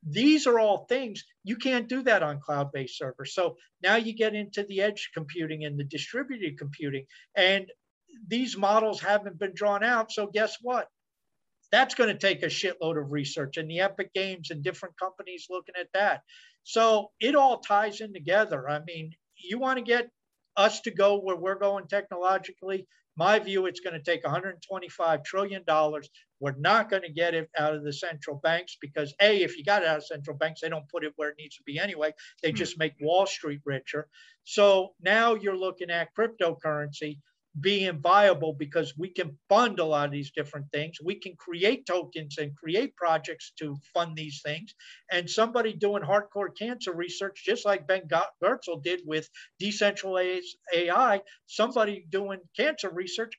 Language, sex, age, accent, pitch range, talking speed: English, male, 50-69, American, 160-205 Hz, 180 wpm